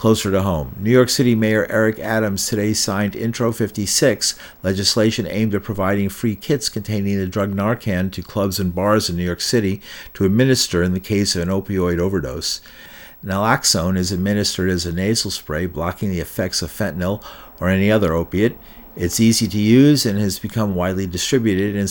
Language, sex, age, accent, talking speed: English, male, 50-69, American, 180 wpm